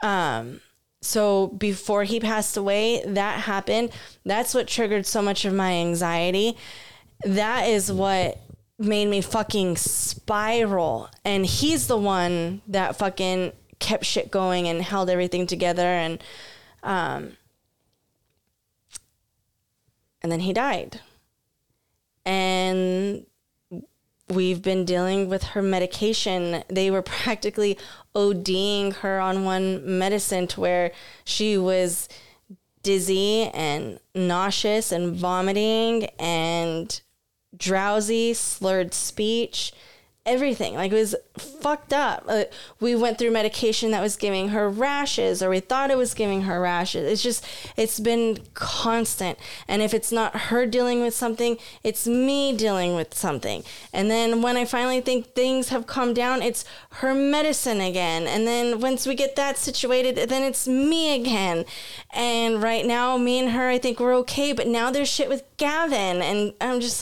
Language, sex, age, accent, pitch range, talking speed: English, female, 20-39, American, 185-240 Hz, 140 wpm